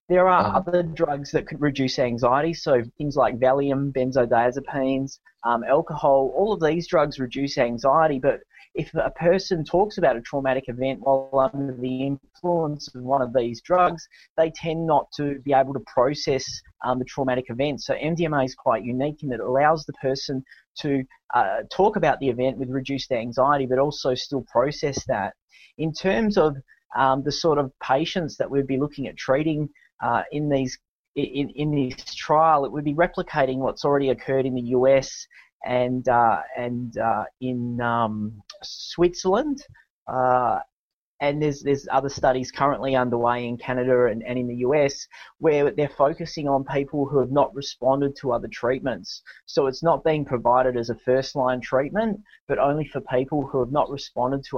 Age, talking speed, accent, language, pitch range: 20-39, 175 wpm, Australian, English, 125-150 Hz